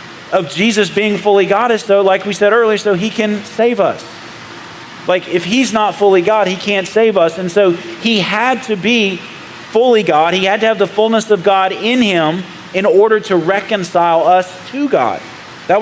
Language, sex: English, male